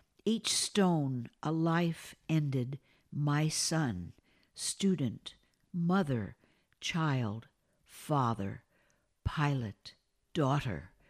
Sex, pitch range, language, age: female, 150-185 Hz, English, 60-79